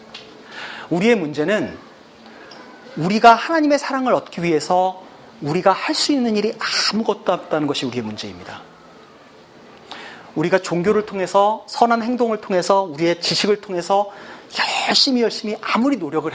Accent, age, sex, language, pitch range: native, 40-59, male, Korean, 160-240 Hz